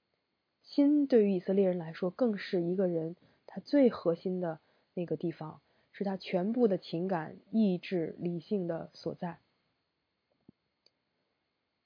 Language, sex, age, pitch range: Chinese, female, 20-39, 175-220 Hz